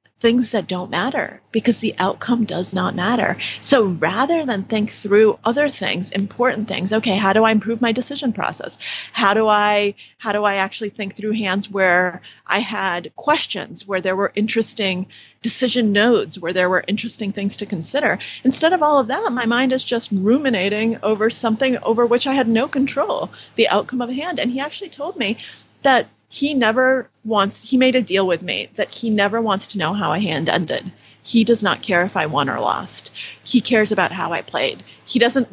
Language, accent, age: English, American, 30-49